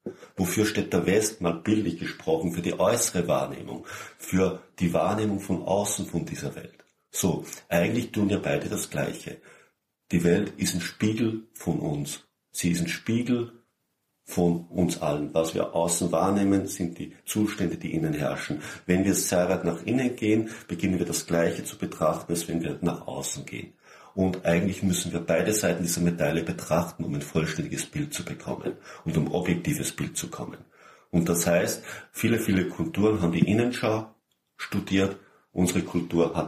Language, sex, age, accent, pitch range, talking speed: German, male, 50-69, German, 85-100 Hz, 170 wpm